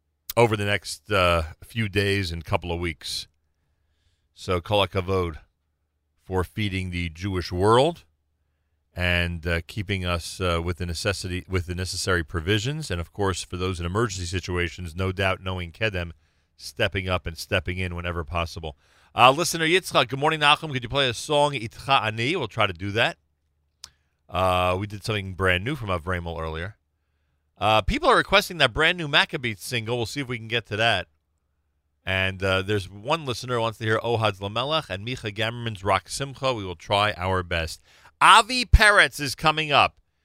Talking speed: 175 wpm